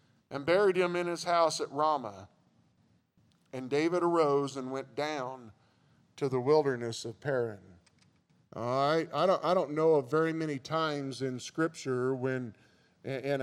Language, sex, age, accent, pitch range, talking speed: English, male, 40-59, American, 135-165 Hz, 150 wpm